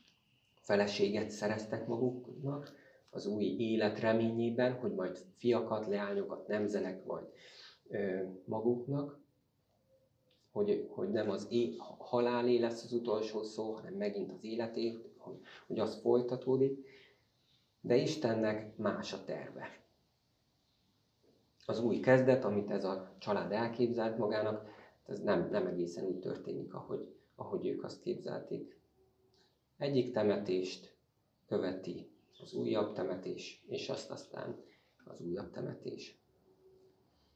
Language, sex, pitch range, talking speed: Hungarian, male, 105-125 Hz, 110 wpm